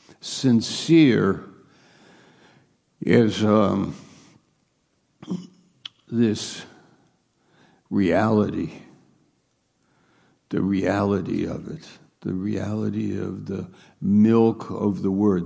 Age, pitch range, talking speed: 60-79, 100-115 Hz, 65 wpm